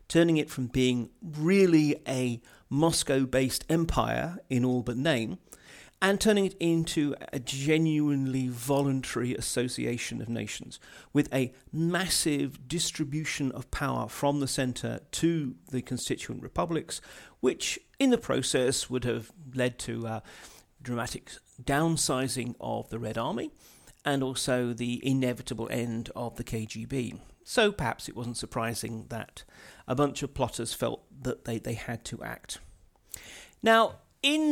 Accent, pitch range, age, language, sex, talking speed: British, 120-155 Hz, 40-59, English, male, 135 wpm